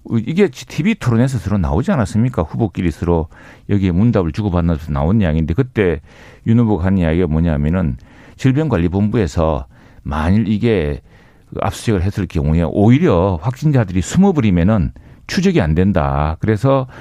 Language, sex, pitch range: Korean, male, 90-130 Hz